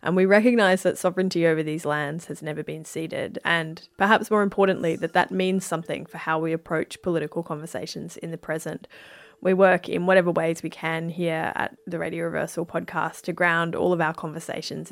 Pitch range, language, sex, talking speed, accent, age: 155-185 Hz, English, female, 195 wpm, Australian, 10-29